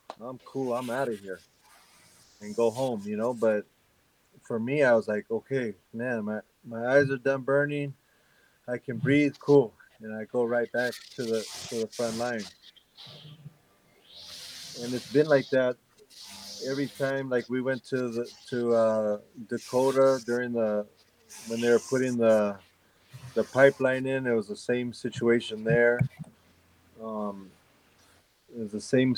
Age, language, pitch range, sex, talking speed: 30-49, English, 110-130 Hz, male, 155 wpm